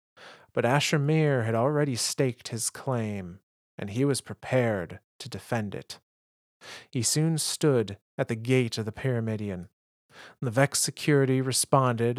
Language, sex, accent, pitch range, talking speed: English, male, American, 110-130 Hz, 140 wpm